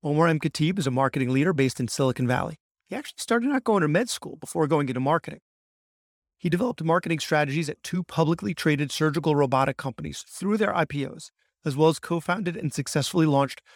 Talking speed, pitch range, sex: 190 wpm, 135-170 Hz, male